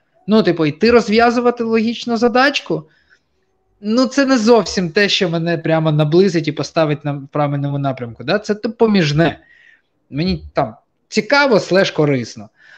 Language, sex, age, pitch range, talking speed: Ukrainian, male, 20-39, 135-180 Hz, 135 wpm